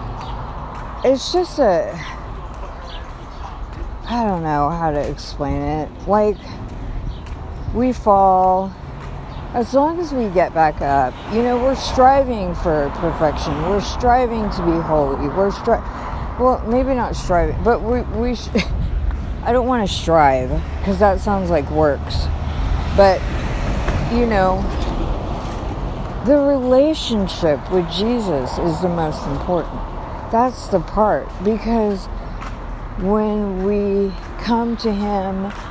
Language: English